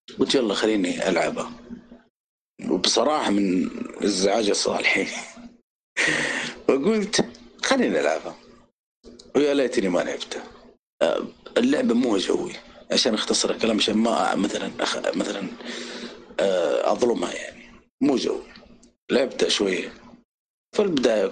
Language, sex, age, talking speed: Arabic, male, 50-69, 95 wpm